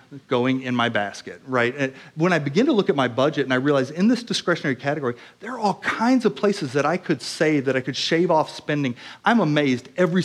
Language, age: English, 40-59